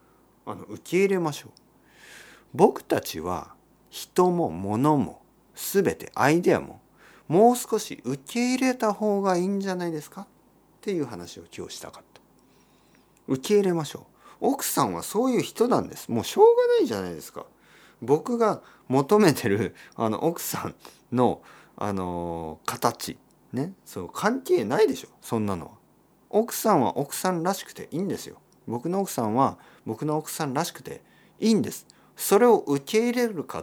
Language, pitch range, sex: Japanese, 120-200 Hz, male